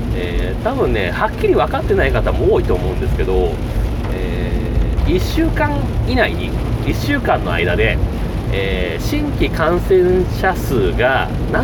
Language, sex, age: Japanese, male, 30-49